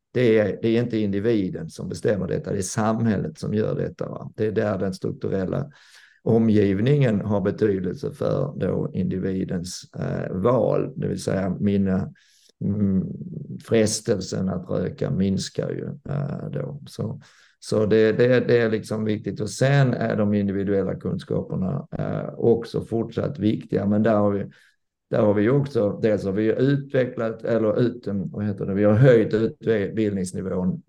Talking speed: 150 wpm